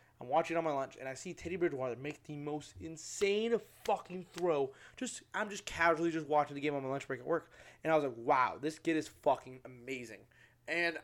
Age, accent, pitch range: 20-39, American, 130-175 Hz